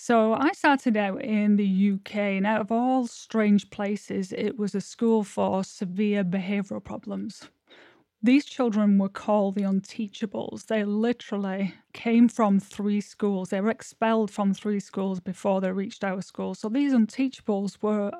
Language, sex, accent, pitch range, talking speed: English, female, British, 200-235 Hz, 160 wpm